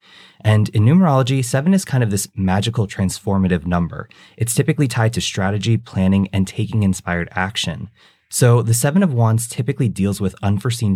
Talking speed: 160 wpm